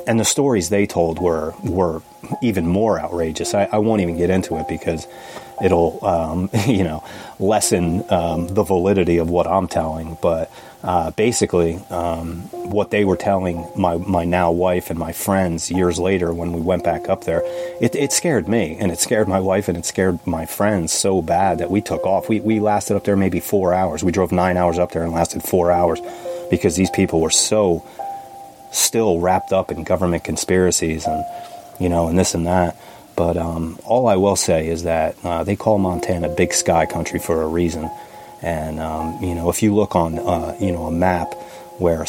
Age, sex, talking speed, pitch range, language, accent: 30-49, male, 200 wpm, 85-95 Hz, English, American